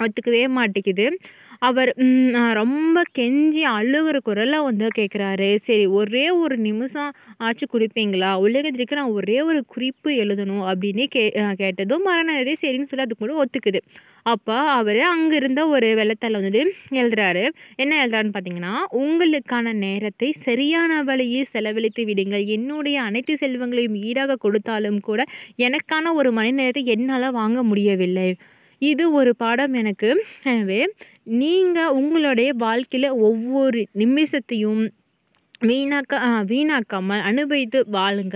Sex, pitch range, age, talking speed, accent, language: female, 215-275 Hz, 20-39, 110 wpm, native, Tamil